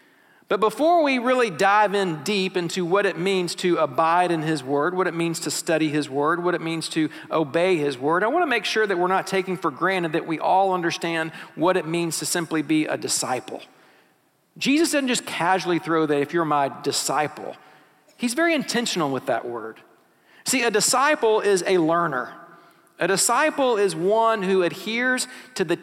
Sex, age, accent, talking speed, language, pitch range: male, 50-69, American, 190 wpm, English, 170-235 Hz